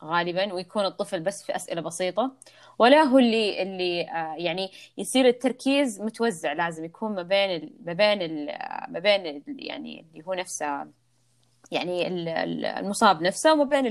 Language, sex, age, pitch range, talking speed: Arabic, female, 20-39, 170-230 Hz, 140 wpm